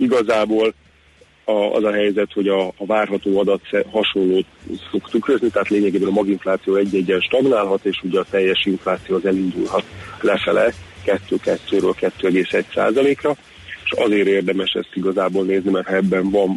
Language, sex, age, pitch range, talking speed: Hungarian, male, 30-49, 95-100 Hz, 145 wpm